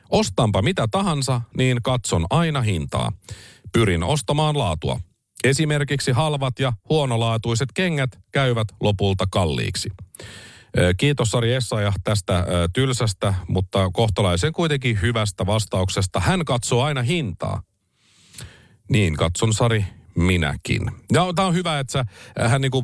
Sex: male